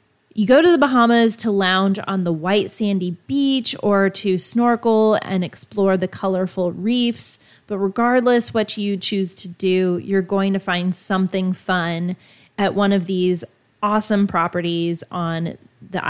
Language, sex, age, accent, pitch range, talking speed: English, female, 30-49, American, 185-225 Hz, 155 wpm